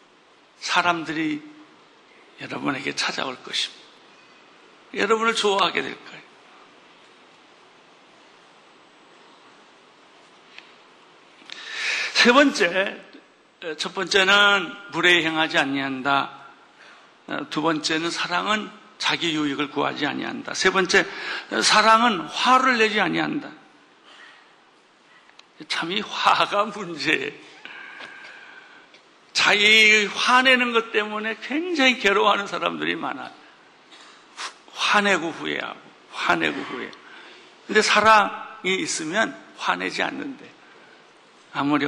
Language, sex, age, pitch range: Korean, male, 60-79, 170-255 Hz